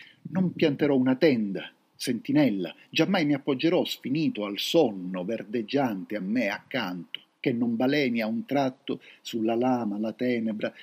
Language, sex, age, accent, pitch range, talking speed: Italian, male, 50-69, native, 115-160 Hz, 140 wpm